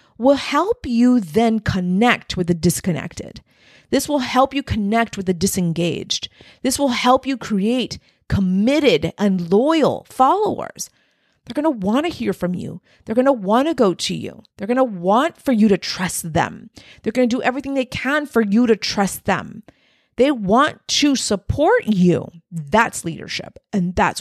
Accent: American